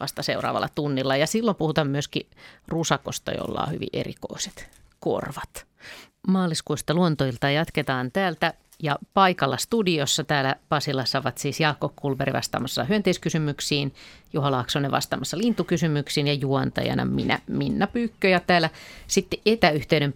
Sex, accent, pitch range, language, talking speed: female, native, 130-165 Hz, Finnish, 120 wpm